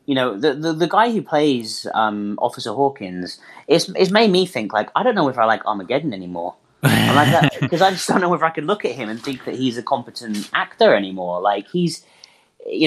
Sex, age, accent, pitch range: male, 30-49, British, 105-150 Hz